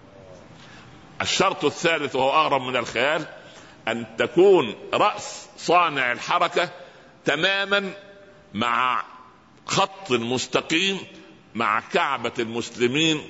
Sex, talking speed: male, 80 wpm